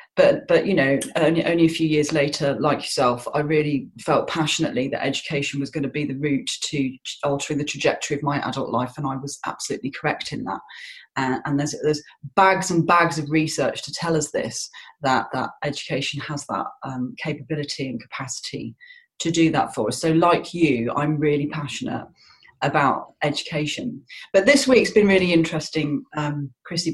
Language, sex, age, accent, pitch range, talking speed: English, female, 30-49, British, 145-170 Hz, 185 wpm